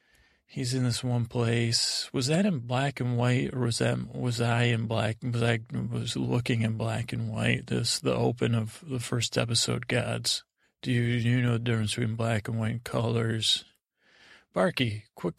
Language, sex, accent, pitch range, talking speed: English, male, American, 115-130 Hz, 190 wpm